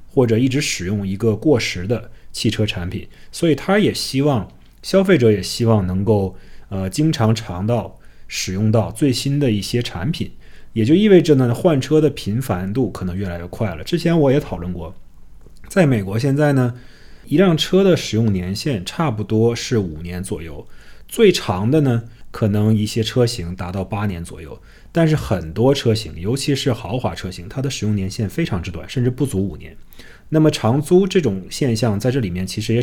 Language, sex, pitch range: Chinese, male, 100-140 Hz